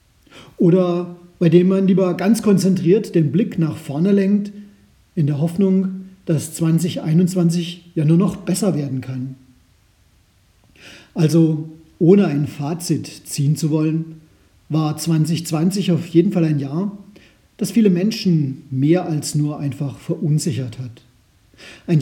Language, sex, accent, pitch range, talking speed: German, male, German, 150-190 Hz, 130 wpm